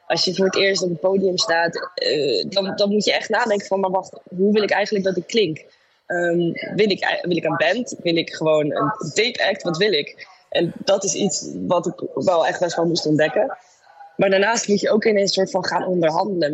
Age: 20-39